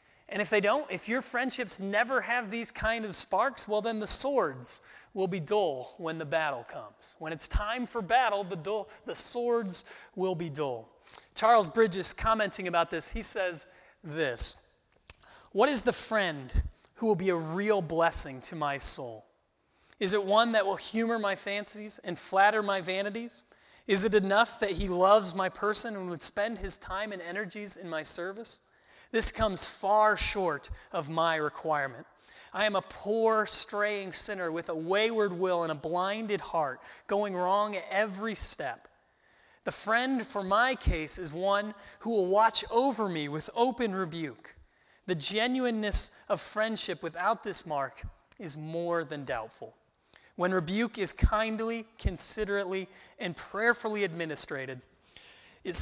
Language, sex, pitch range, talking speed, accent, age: English, male, 175-220 Hz, 160 wpm, American, 30-49